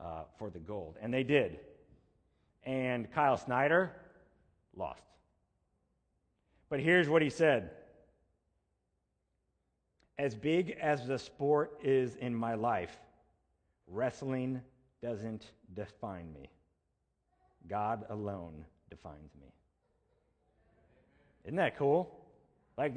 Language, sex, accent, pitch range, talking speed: English, male, American, 105-145 Hz, 95 wpm